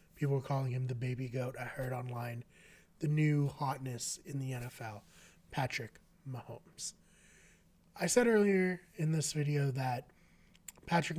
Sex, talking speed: male, 140 wpm